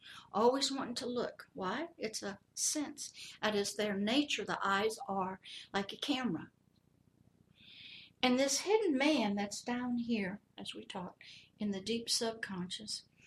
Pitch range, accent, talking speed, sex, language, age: 200-250 Hz, American, 145 wpm, female, English, 60-79